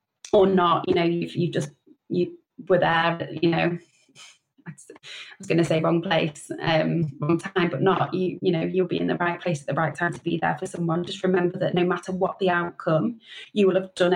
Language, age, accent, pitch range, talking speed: English, 20-39, British, 170-190 Hz, 230 wpm